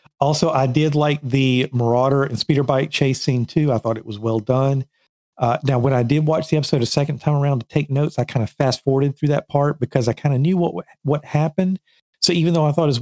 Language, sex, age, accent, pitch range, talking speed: English, male, 50-69, American, 120-150 Hz, 255 wpm